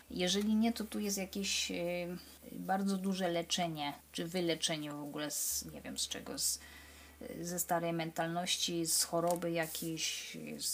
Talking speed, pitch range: 140 wpm, 165-190 Hz